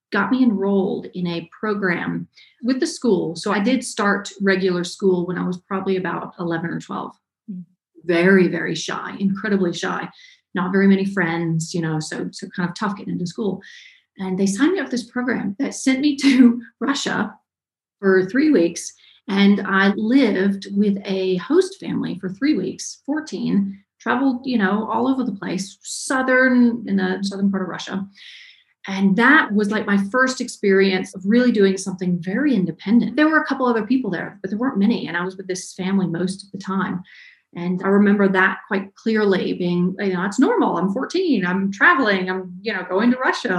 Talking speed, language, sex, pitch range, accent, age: 190 wpm, English, female, 185-235 Hz, American, 30-49